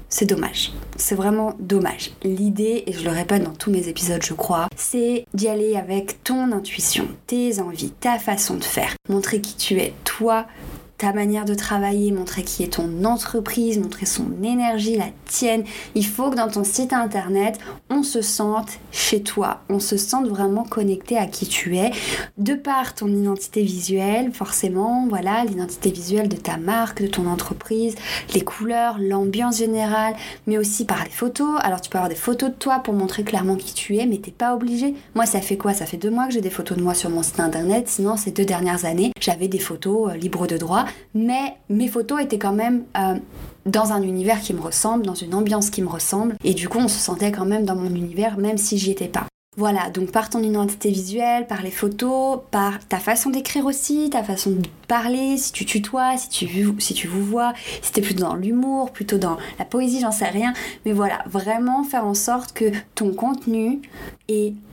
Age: 20-39